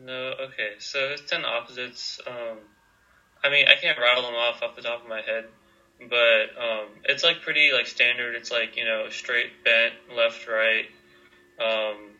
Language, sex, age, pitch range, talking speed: English, male, 20-39, 115-145 Hz, 175 wpm